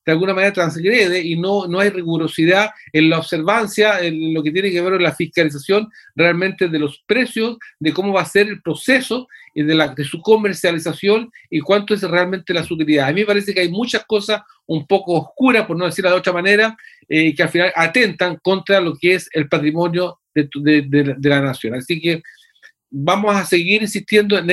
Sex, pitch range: male, 155-195 Hz